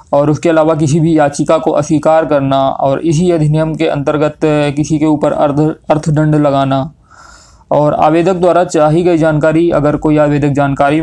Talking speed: 165 wpm